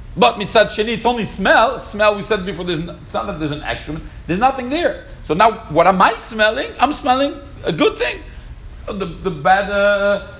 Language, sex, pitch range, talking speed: English, male, 130-185 Hz, 200 wpm